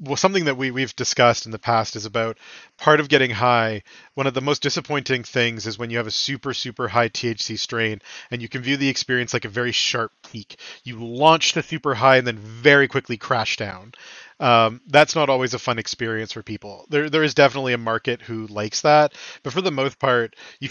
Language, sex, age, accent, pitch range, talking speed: English, male, 30-49, American, 115-140 Hz, 225 wpm